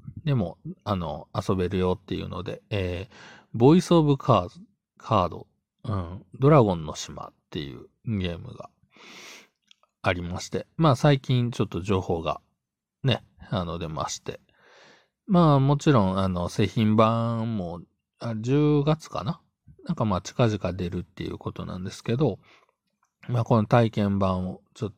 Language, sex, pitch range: Japanese, male, 90-125 Hz